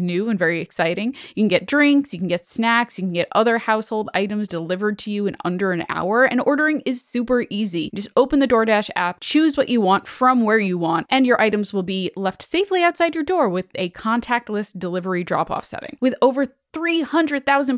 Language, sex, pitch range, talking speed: English, female, 195-280 Hz, 210 wpm